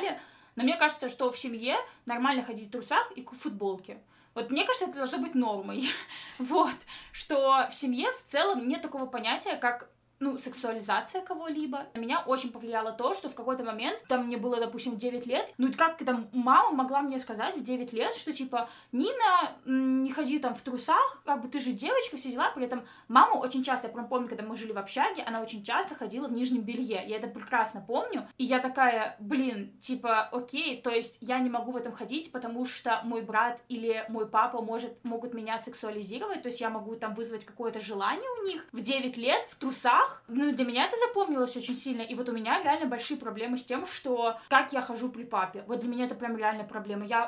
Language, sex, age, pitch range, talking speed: Russian, female, 20-39, 230-270 Hz, 210 wpm